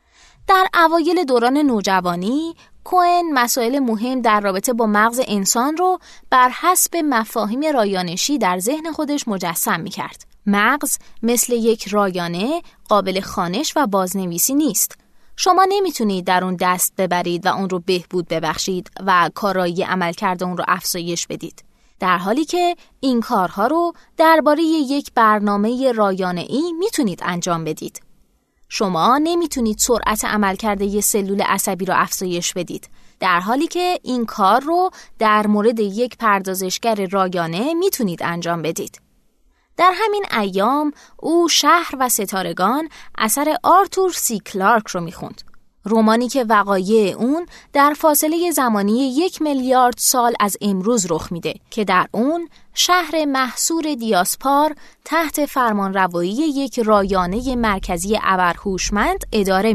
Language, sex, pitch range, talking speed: Persian, female, 190-295 Hz, 130 wpm